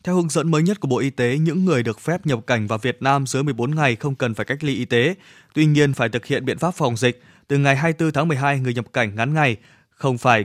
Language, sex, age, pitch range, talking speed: Vietnamese, male, 20-39, 120-155 Hz, 280 wpm